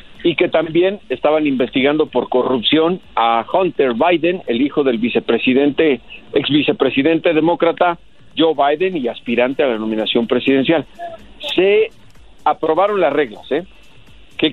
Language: Spanish